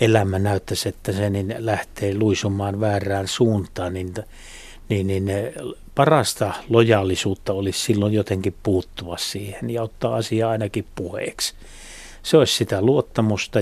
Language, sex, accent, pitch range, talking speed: Finnish, male, native, 95-110 Hz, 125 wpm